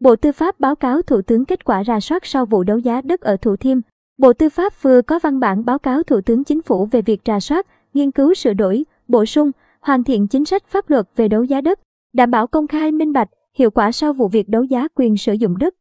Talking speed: 260 wpm